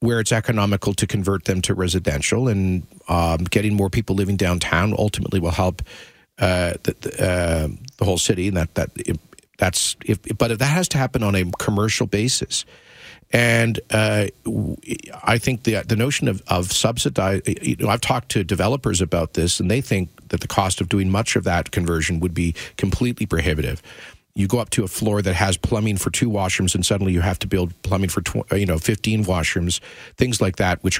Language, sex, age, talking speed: English, male, 50-69, 200 wpm